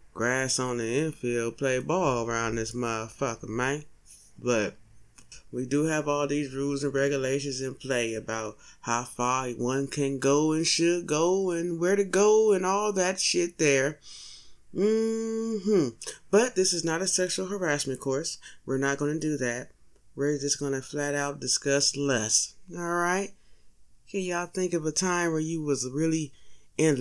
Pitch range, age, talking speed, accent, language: 130-165 Hz, 20-39, 160 wpm, American, English